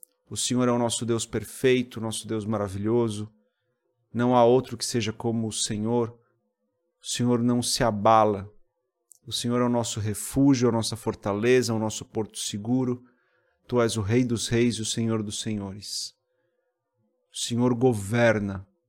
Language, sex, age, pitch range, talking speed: Portuguese, male, 40-59, 110-125 Hz, 160 wpm